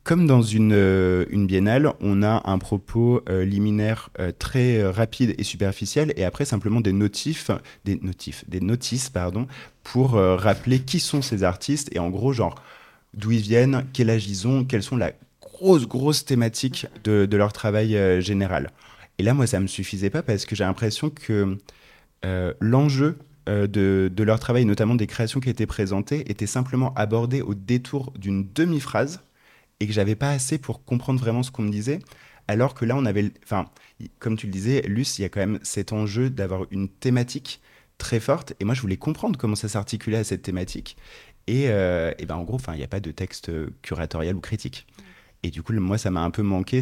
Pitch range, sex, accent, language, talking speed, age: 95-125 Hz, male, French, French, 205 wpm, 20-39